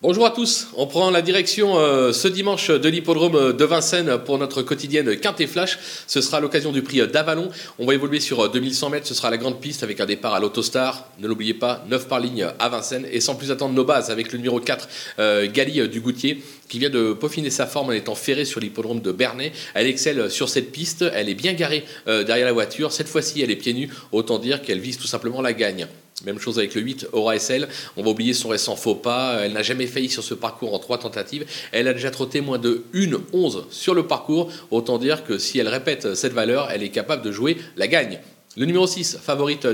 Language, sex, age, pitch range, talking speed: French, male, 30-49, 125-160 Hz, 235 wpm